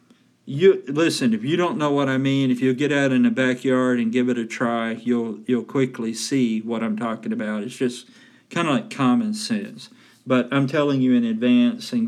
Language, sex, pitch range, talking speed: English, male, 120-150 Hz, 215 wpm